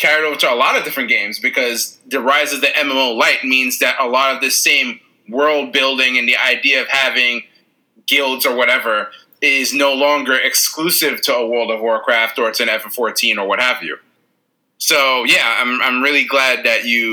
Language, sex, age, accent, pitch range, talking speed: English, male, 20-39, American, 120-150 Hz, 200 wpm